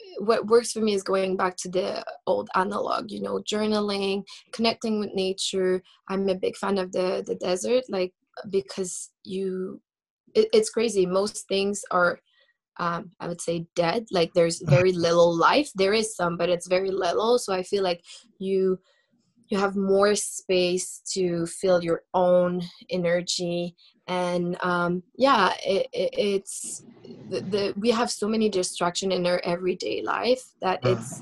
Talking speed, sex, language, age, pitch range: 160 wpm, female, English, 20-39, 180-225 Hz